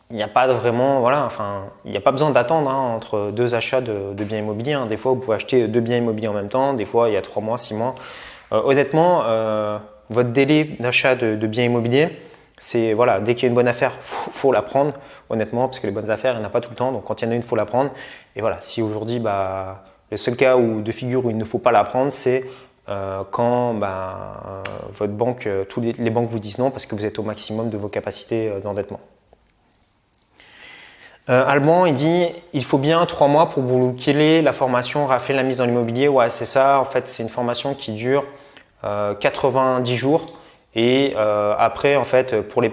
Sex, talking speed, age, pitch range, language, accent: male, 235 wpm, 20-39, 110-130 Hz, French, French